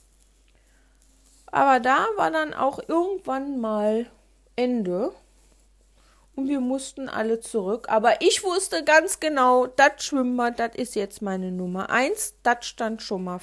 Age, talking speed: 40-59, 135 wpm